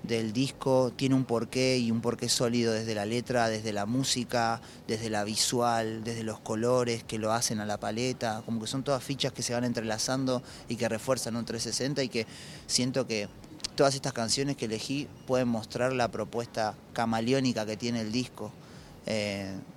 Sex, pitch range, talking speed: male, 115-135 Hz, 180 wpm